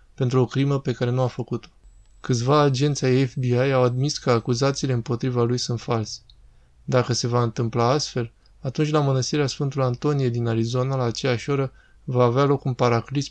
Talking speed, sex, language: 175 wpm, male, Romanian